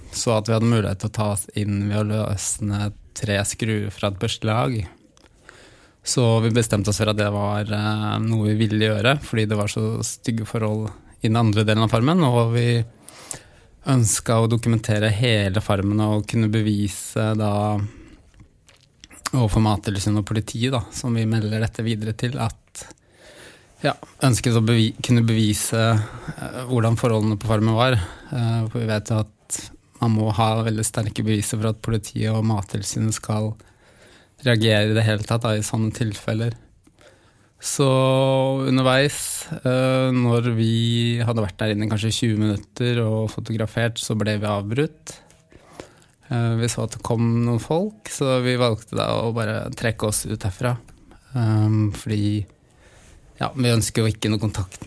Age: 20-39